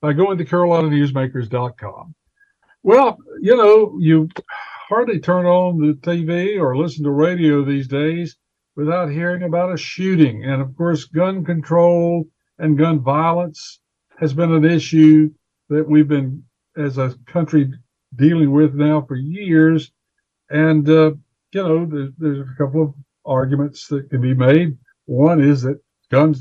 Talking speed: 150 wpm